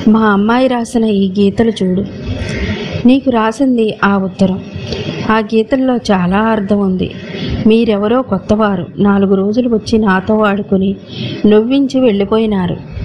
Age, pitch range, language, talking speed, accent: 30-49, 195-235 Hz, Telugu, 110 wpm, native